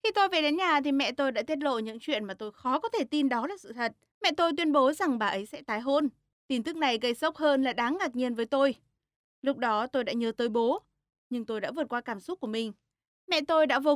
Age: 20-39